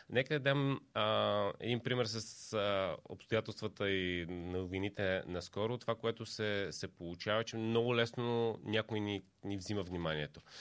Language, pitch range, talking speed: Bulgarian, 100-115 Hz, 140 wpm